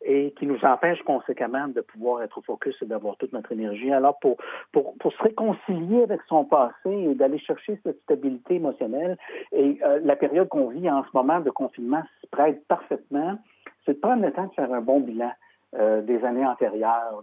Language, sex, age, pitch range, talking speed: French, male, 60-79, 135-195 Hz, 200 wpm